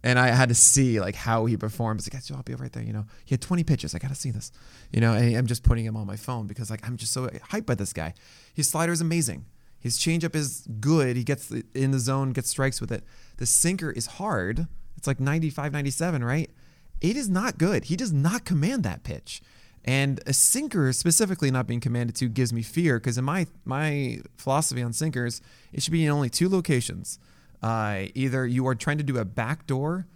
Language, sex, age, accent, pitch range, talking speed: English, male, 20-39, American, 115-145 Hz, 230 wpm